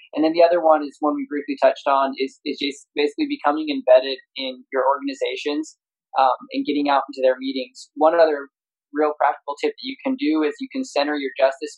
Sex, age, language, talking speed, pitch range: male, 20-39, English, 215 wpm, 135-175 Hz